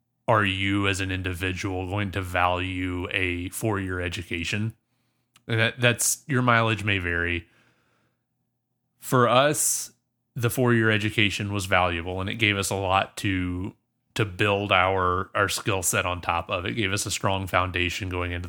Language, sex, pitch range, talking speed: English, male, 95-120 Hz, 160 wpm